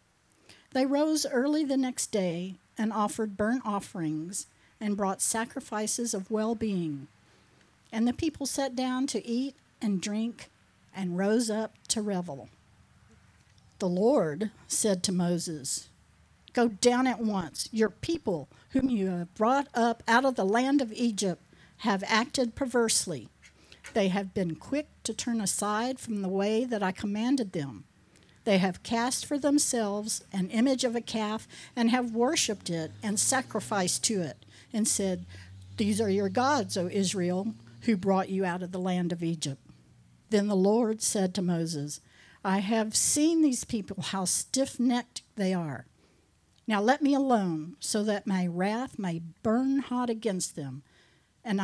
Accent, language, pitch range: American, English, 180-235 Hz